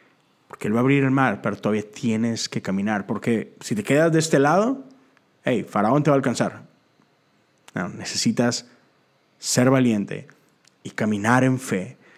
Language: Spanish